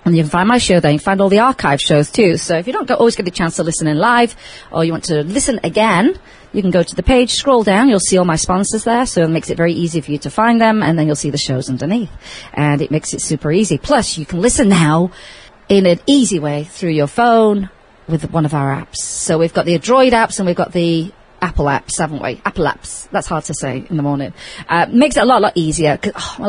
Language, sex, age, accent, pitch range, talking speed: English, female, 40-59, British, 160-240 Hz, 270 wpm